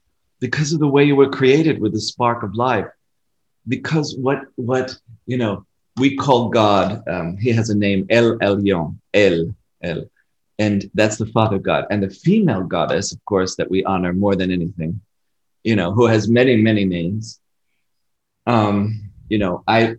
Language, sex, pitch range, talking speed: Italian, male, 100-125 Hz, 170 wpm